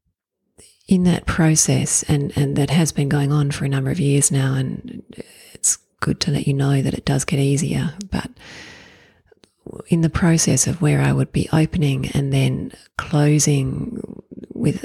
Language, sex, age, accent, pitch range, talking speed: English, female, 30-49, Australian, 135-155 Hz, 170 wpm